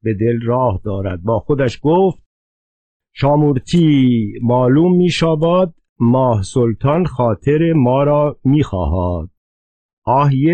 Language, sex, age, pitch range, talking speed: Persian, male, 50-69, 100-140 Hz, 100 wpm